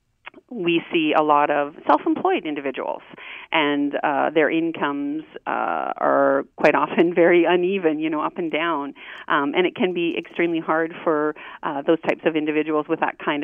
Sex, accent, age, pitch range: female, American, 40-59, 145-180 Hz